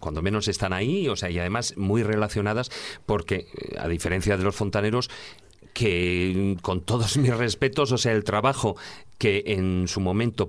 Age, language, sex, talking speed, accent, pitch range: 40-59, Spanish, male, 165 wpm, Spanish, 95-120 Hz